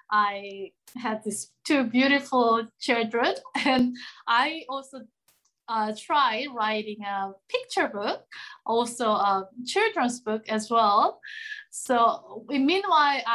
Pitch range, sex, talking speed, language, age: 215-255 Hz, female, 105 wpm, English, 20-39